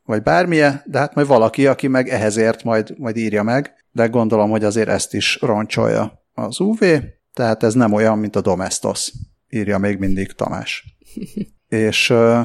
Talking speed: 165 wpm